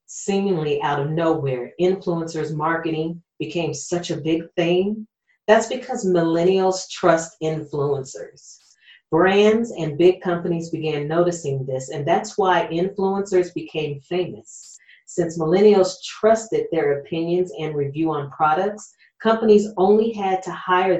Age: 40-59